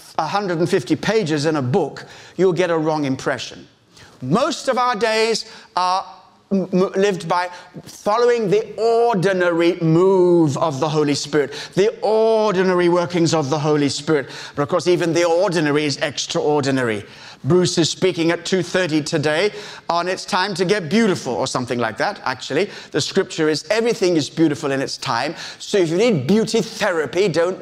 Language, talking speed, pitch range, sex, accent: English, 160 wpm, 160-200 Hz, male, British